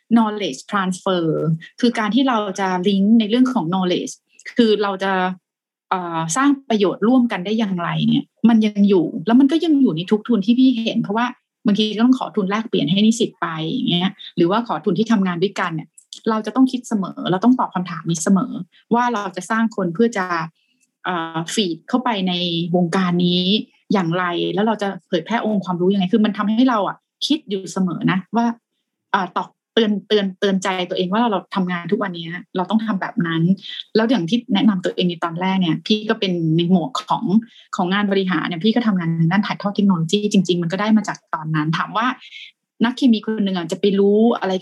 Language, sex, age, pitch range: Thai, female, 20-39, 180-225 Hz